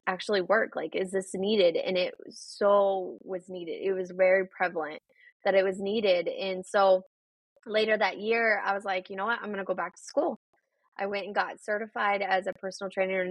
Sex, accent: female, American